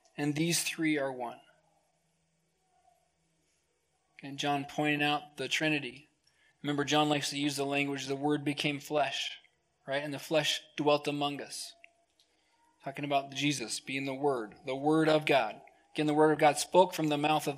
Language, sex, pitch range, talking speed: English, male, 150-185 Hz, 165 wpm